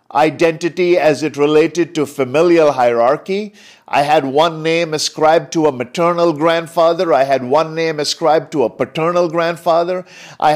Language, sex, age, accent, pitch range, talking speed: English, male, 50-69, Indian, 145-180 Hz, 150 wpm